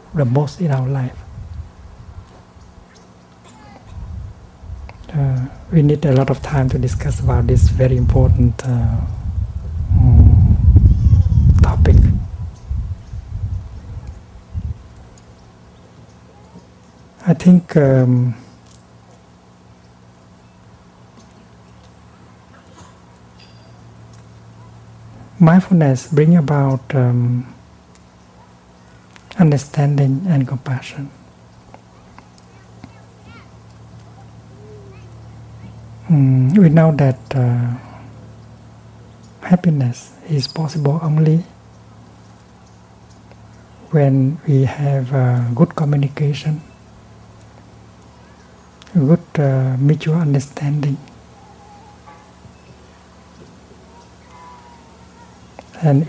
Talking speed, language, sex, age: 55 wpm, English, male, 60-79